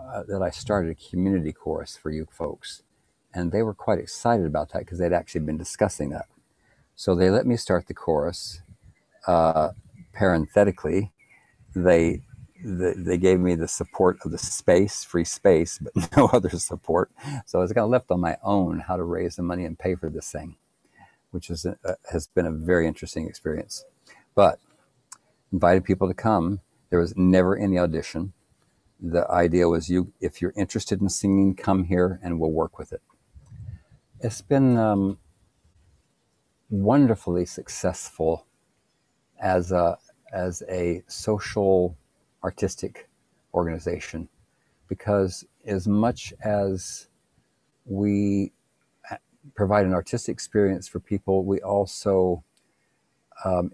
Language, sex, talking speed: English, male, 140 wpm